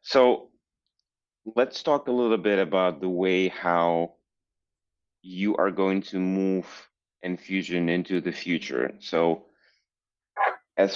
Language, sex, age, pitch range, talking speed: English, male, 30-49, 85-95 Hz, 115 wpm